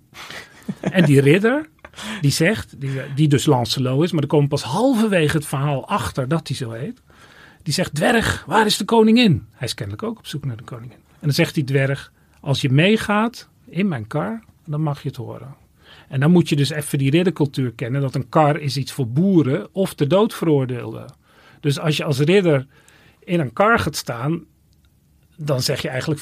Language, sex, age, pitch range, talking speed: Dutch, male, 40-59, 125-160 Hz, 200 wpm